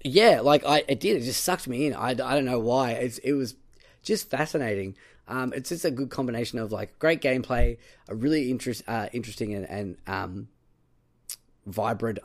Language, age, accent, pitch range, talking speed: English, 10-29, Australian, 105-130 Hz, 190 wpm